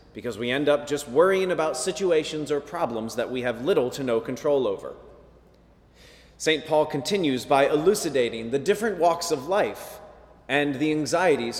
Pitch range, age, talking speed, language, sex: 140-205 Hz, 30-49, 160 wpm, English, male